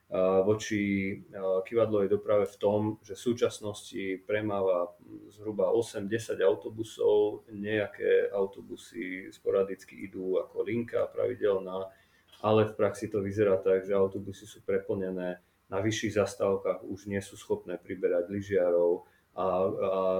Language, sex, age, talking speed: Slovak, male, 30-49, 120 wpm